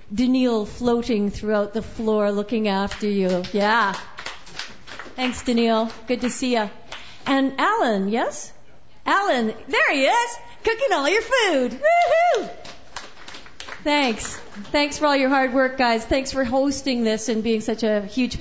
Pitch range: 220-260 Hz